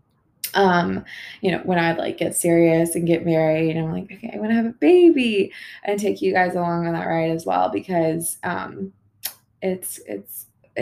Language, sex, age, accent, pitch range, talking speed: English, female, 20-39, American, 170-190 Hz, 195 wpm